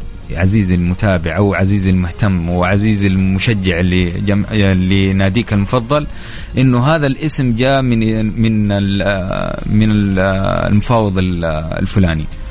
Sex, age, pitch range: male, 30-49, 95-125 Hz